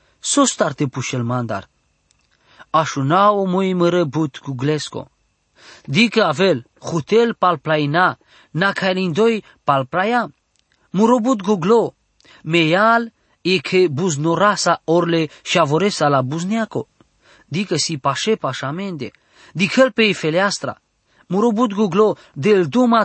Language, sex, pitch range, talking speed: English, male, 140-200 Hz, 100 wpm